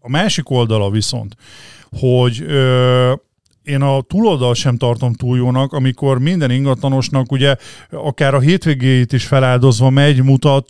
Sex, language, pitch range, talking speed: male, Hungarian, 125-140 Hz, 135 wpm